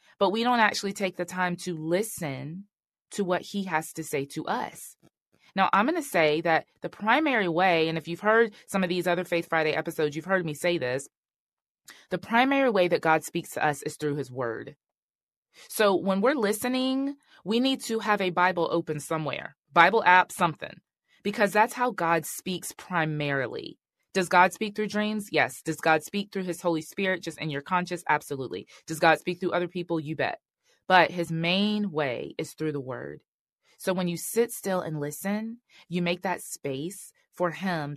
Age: 20-39